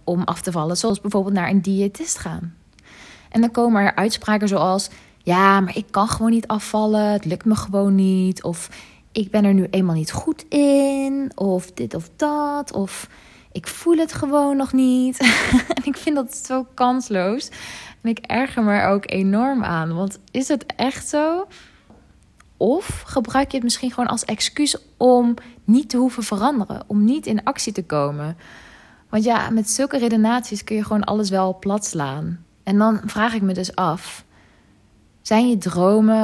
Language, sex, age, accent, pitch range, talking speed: Dutch, female, 20-39, Dutch, 195-250 Hz, 180 wpm